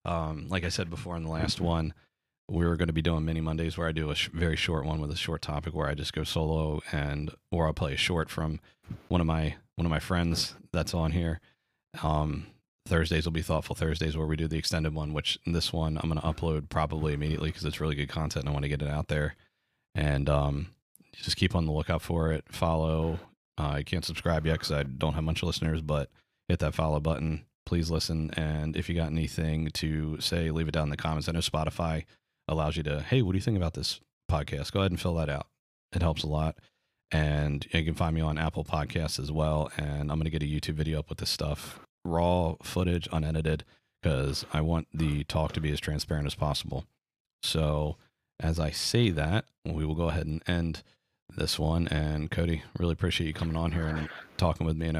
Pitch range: 75-85 Hz